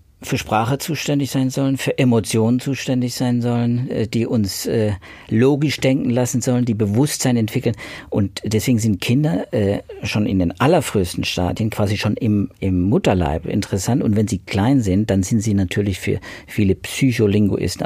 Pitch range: 100-120 Hz